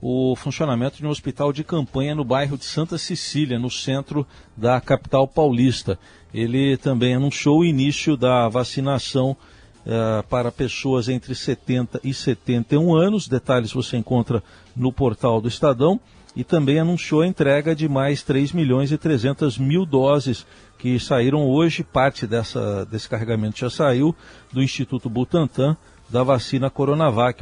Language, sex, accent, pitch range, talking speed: Portuguese, male, Brazilian, 120-145 Hz, 140 wpm